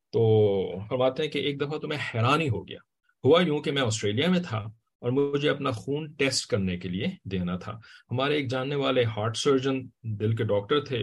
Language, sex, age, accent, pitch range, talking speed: English, male, 40-59, Indian, 105-135 Hz, 205 wpm